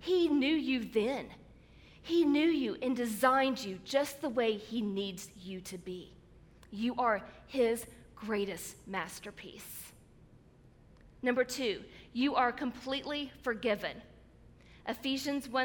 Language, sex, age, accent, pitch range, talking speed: English, female, 40-59, American, 205-265 Hz, 115 wpm